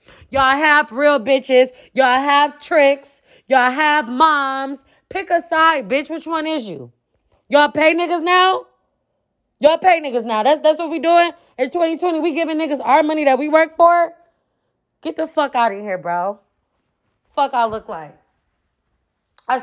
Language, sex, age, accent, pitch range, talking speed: English, female, 20-39, American, 245-305 Hz, 165 wpm